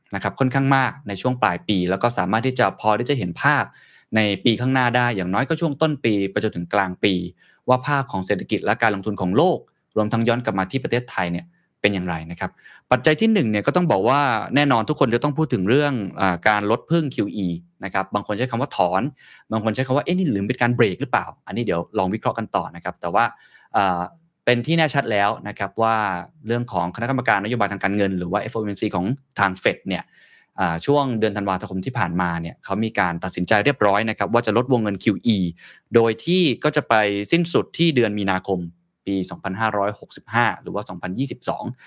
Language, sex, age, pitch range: Thai, male, 20-39, 95-130 Hz